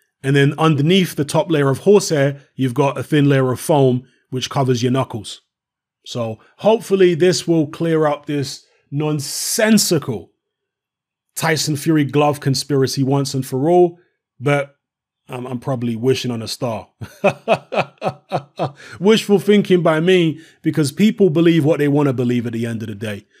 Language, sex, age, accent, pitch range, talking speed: English, male, 30-49, British, 140-190 Hz, 155 wpm